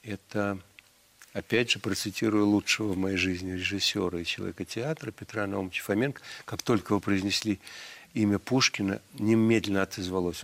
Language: Russian